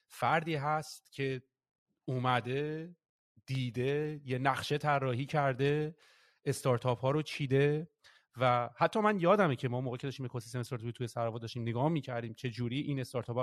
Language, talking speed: Persian, 150 wpm